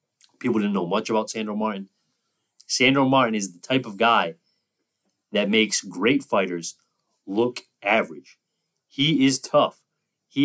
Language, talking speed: English, 140 wpm